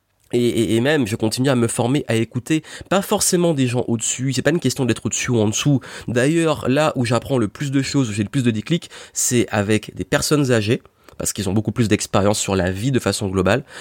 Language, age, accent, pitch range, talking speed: French, 20-39, French, 110-140 Hz, 230 wpm